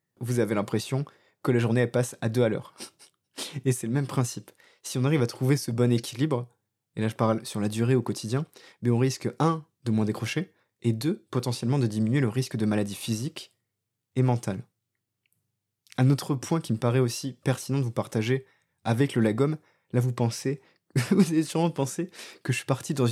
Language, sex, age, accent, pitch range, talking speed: French, male, 20-39, French, 115-135 Hz, 200 wpm